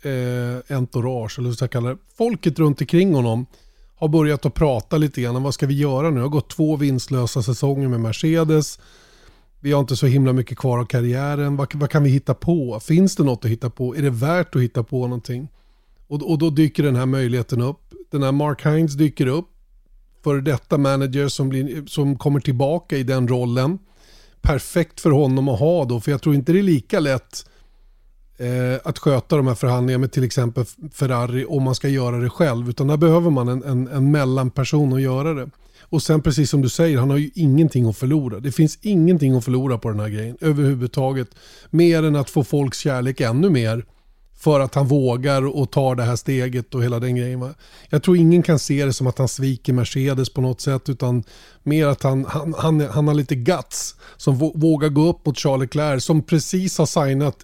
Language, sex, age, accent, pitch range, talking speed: Swedish, male, 30-49, native, 125-150 Hz, 210 wpm